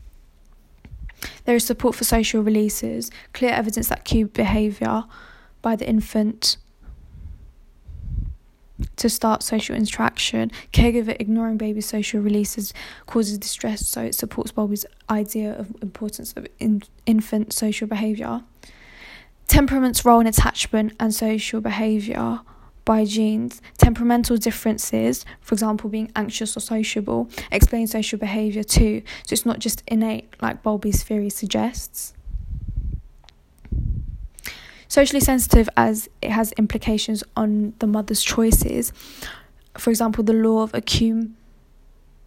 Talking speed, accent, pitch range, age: 115 wpm, British, 200-225 Hz, 10-29